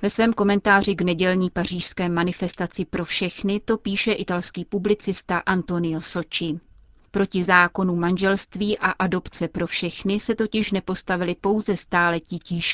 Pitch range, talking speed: 175-200 Hz, 130 wpm